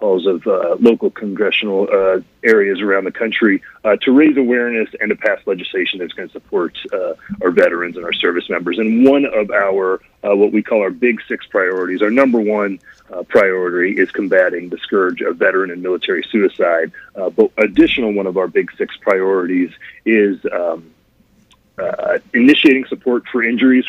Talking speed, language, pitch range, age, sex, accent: 175 wpm, English, 100-135 Hz, 40-59, male, American